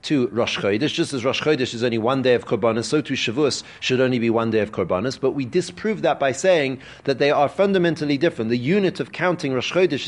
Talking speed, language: 240 wpm, English